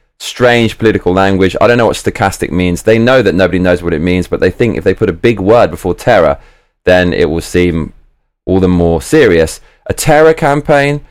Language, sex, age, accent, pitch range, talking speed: English, male, 20-39, British, 85-110 Hz, 210 wpm